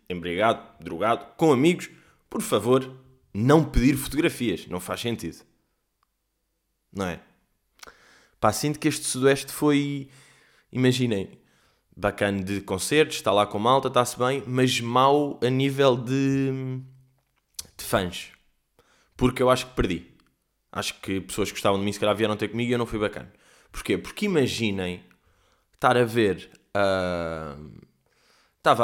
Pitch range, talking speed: 100-155 Hz, 135 wpm